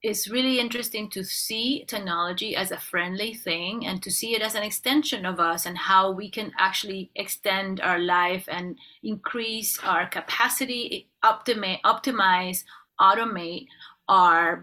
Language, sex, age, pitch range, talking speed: English, female, 30-49, 180-215 Hz, 145 wpm